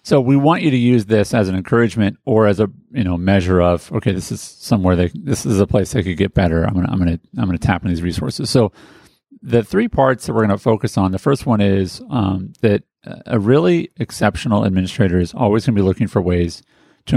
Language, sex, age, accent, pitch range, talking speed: English, male, 40-59, American, 95-120 Hz, 235 wpm